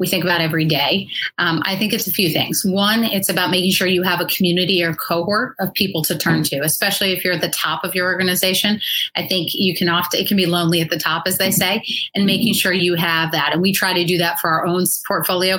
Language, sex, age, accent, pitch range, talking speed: English, female, 30-49, American, 165-190 Hz, 260 wpm